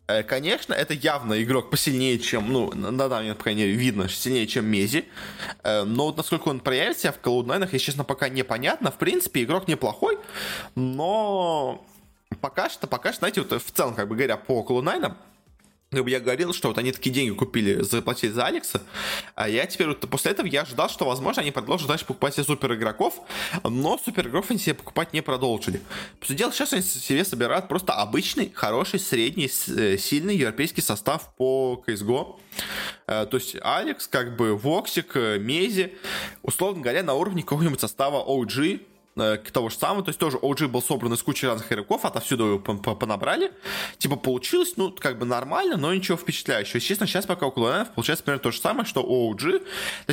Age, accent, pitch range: 20-39, native, 125-175 Hz